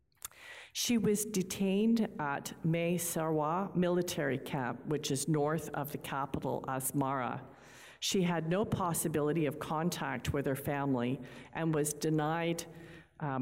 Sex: female